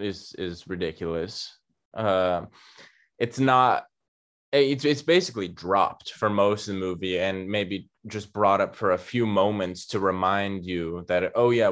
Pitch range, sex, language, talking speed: 95-115 Hz, male, English, 155 wpm